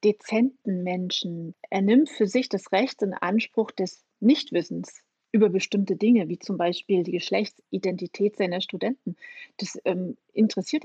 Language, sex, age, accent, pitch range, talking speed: German, female, 30-49, German, 190-235 Hz, 140 wpm